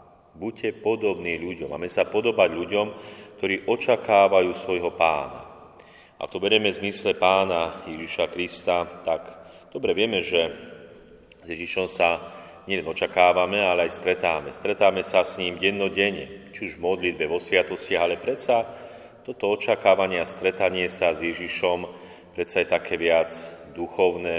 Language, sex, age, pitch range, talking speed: Slovak, male, 30-49, 85-100 Hz, 140 wpm